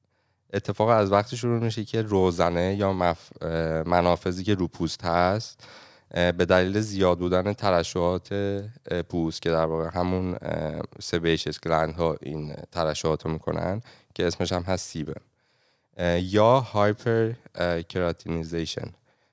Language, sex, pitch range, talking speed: Persian, male, 85-105 Hz, 110 wpm